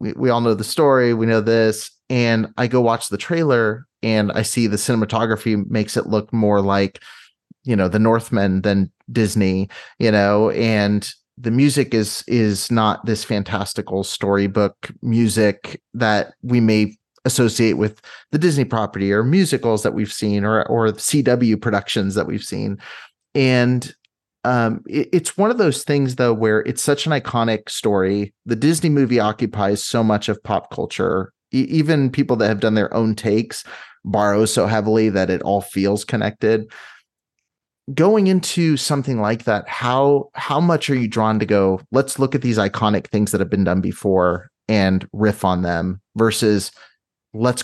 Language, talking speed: English, 170 wpm